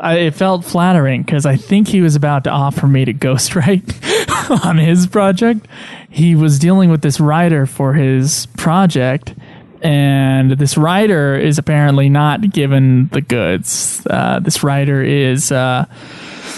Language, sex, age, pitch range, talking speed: English, male, 20-39, 140-170 Hz, 150 wpm